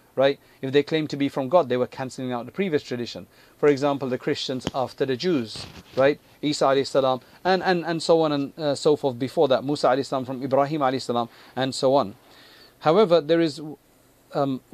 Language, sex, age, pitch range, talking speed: English, male, 40-59, 130-150 Hz, 195 wpm